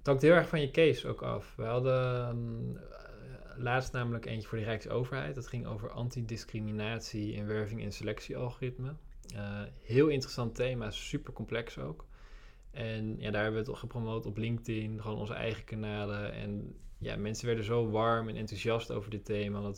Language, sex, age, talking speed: Dutch, male, 20-39, 175 wpm